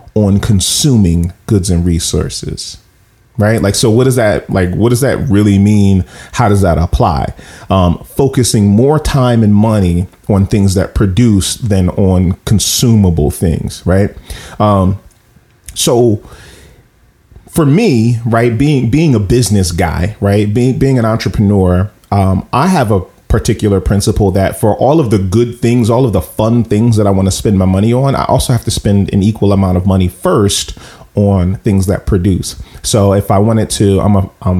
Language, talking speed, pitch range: English, 175 wpm, 95-115 Hz